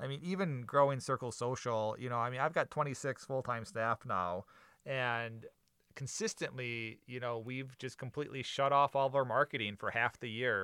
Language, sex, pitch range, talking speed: English, male, 115-135 Hz, 190 wpm